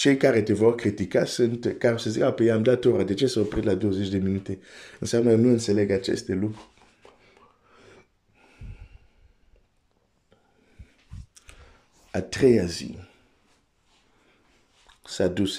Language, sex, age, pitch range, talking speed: Romanian, male, 50-69, 95-115 Hz, 120 wpm